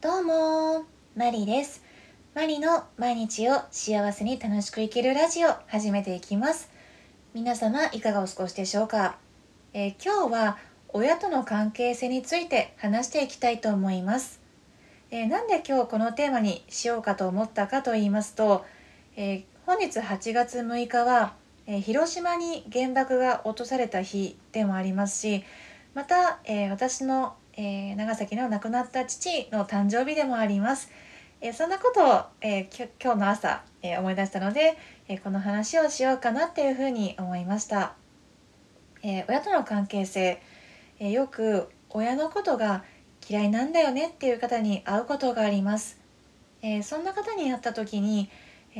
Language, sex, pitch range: Japanese, female, 205-265 Hz